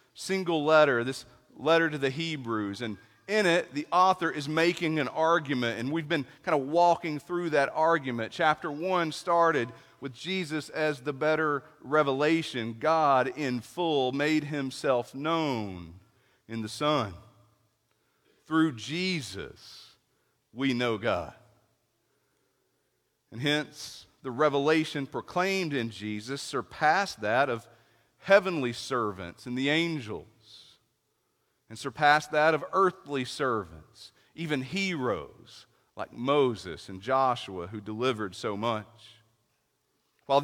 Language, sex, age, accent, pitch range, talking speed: English, male, 40-59, American, 115-160 Hz, 120 wpm